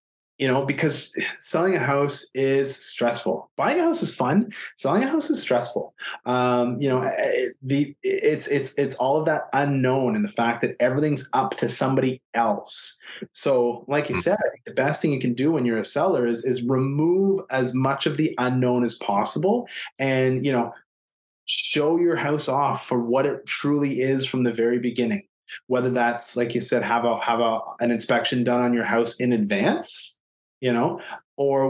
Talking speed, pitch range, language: 190 wpm, 120-140 Hz, English